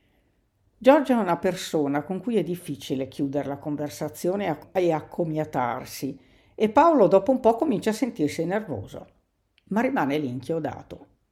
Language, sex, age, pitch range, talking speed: Italian, female, 50-69, 145-195 Hz, 140 wpm